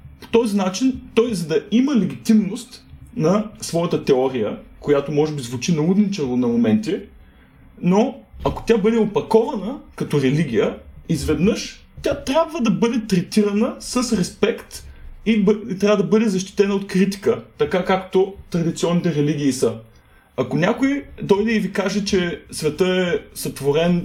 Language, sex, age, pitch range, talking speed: Bulgarian, male, 30-49, 155-225 Hz, 140 wpm